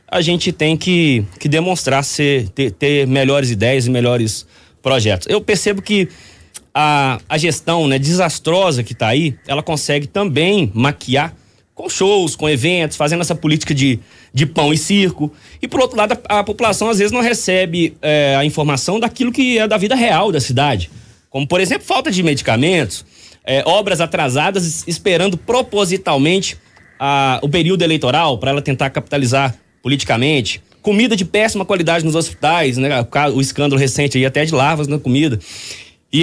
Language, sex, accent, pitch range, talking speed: Portuguese, male, Brazilian, 135-180 Hz, 160 wpm